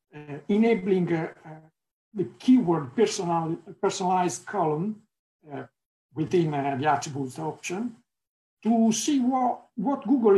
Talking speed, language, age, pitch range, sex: 115 wpm, Slovak, 60-79, 155-205 Hz, male